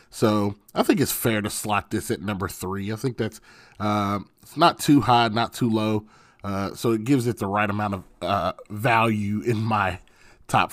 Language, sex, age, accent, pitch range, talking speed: English, male, 30-49, American, 105-125 Hz, 200 wpm